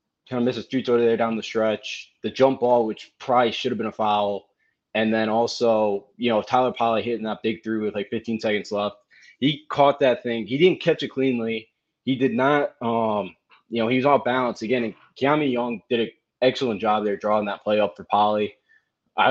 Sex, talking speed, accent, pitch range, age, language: male, 220 wpm, American, 110-125 Hz, 20-39, English